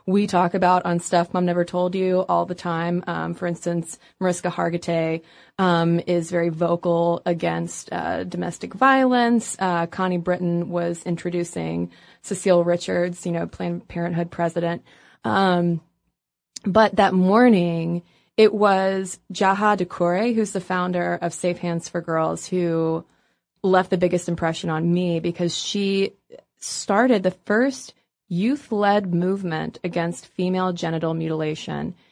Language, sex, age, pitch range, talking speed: English, female, 20-39, 170-195 Hz, 135 wpm